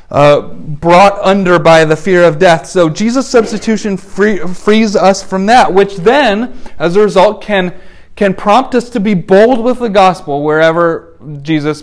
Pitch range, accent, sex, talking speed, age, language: 160-215 Hz, American, male, 165 wpm, 30-49, English